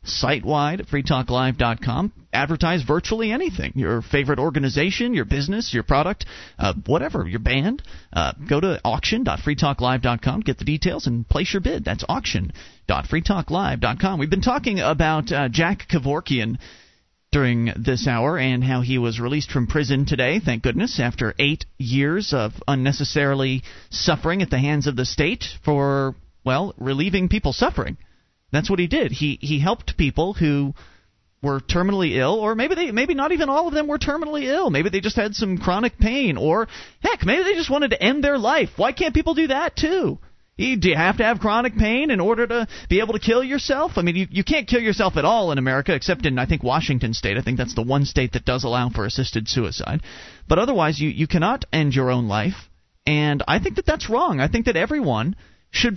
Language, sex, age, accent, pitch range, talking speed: English, male, 40-59, American, 130-215 Hz, 190 wpm